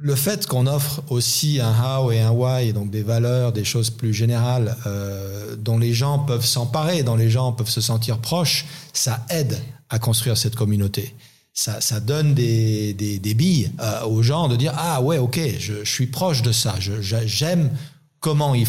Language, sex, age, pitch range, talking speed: French, male, 40-59, 110-135 Hz, 200 wpm